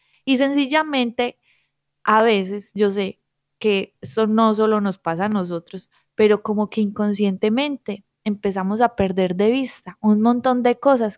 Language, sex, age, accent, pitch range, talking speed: Spanish, female, 20-39, Colombian, 205-250 Hz, 145 wpm